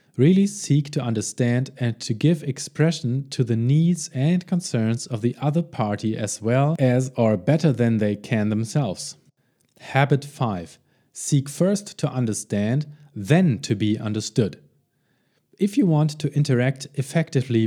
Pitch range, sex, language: 115-150 Hz, male, English